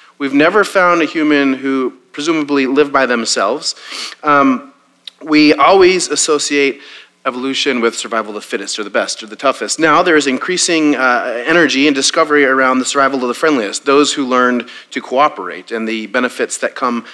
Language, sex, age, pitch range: English, male, 30-49, 120-150 Hz